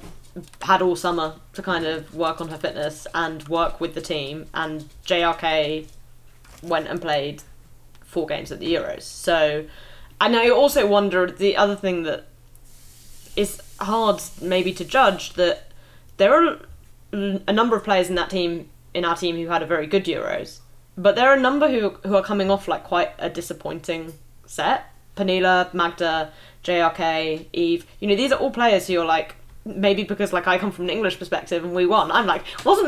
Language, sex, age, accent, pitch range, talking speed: English, female, 10-29, British, 160-200 Hz, 185 wpm